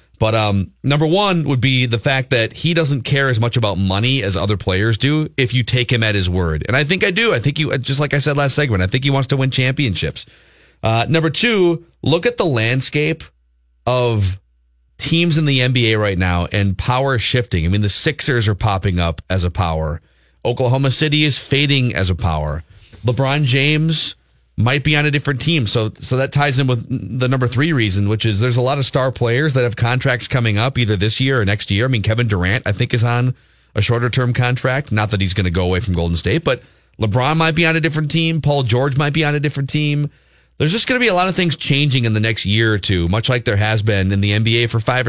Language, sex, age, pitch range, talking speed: English, male, 30-49, 100-145 Hz, 240 wpm